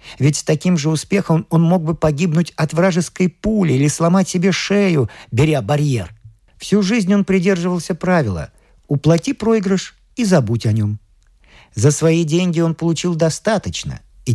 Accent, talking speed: native, 150 wpm